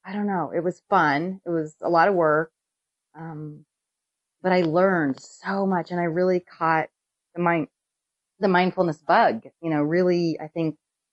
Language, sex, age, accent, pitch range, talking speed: English, female, 30-49, American, 145-175 Hz, 175 wpm